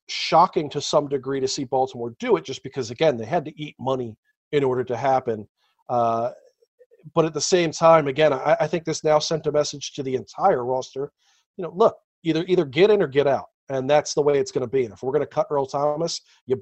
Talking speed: 240 wpm